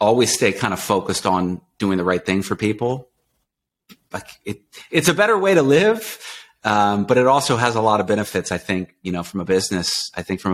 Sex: male